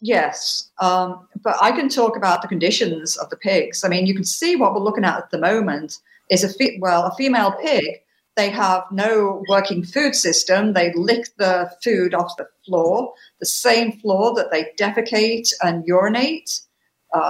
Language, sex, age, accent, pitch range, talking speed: English, female, 50-69, British, 185-250 Hz, 185 wpm